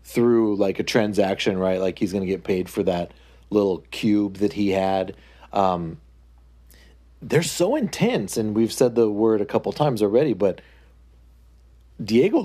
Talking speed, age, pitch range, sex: 155 wpm, 40-59, 85-115 Hz, male